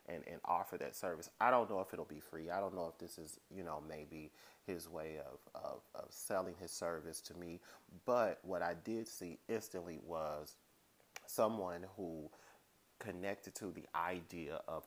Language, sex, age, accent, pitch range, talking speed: English, male, 30-49, American, 80-105 Hz, 180 wpm